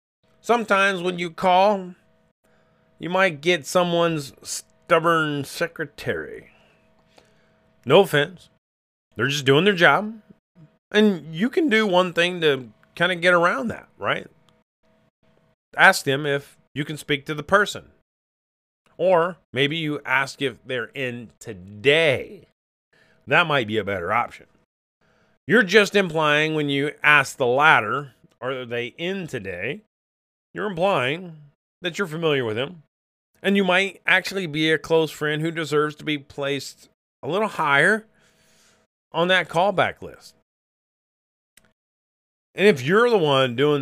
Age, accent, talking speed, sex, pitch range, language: 30-49, American, 135 wpm, male, 130-175 Hz, English